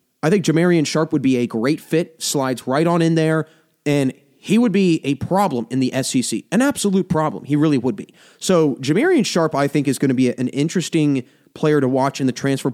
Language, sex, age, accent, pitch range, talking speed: English, male, 30-49, American, 140-170 Hz, 220 wpm